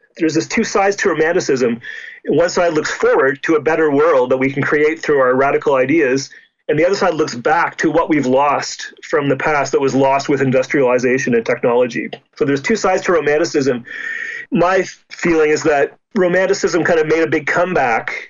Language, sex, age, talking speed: English, male, 30-49, 195 wpm